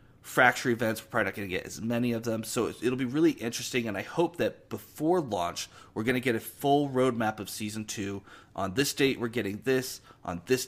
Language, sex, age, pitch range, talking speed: English, male, 30-49, 105-135 Hz, 230 wpm